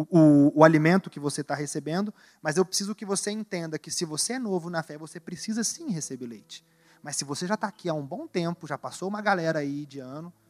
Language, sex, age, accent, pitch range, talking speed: Portuguese, male, 30-49, Brazilian, 145-200 Hz, 245 wpm